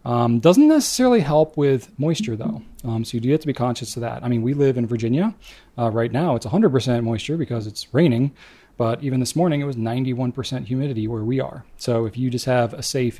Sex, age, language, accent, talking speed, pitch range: male, 30-49, English, American, 230 wpm, 115-130 Hz